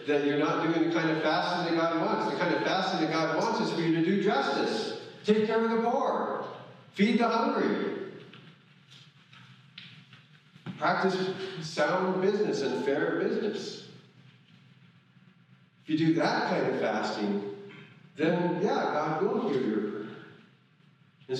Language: English